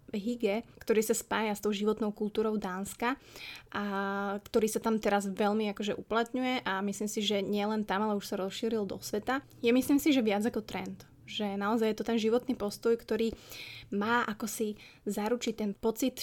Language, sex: Slovak, female